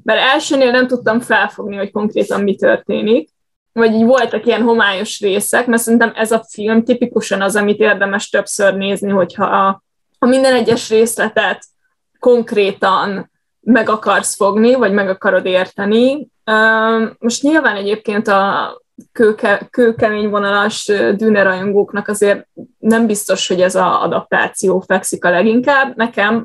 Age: 20-39